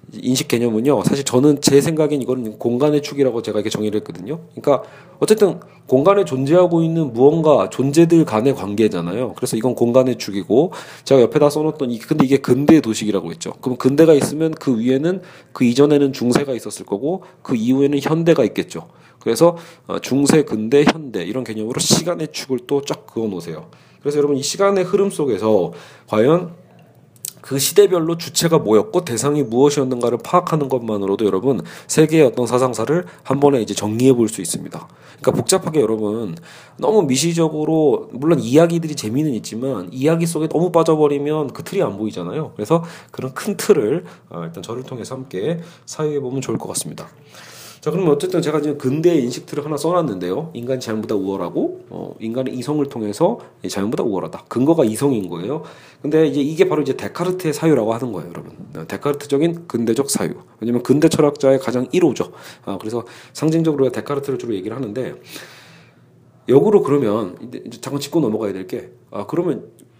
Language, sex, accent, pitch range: Korean, male, native, 120-155 Hz